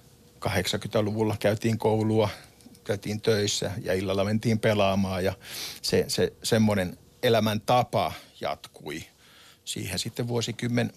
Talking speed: 100 wpm